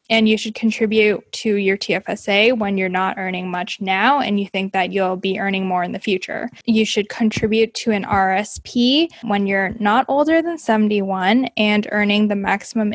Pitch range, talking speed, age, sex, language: 200-235 Hz, 185 wpm, 10-29, female, English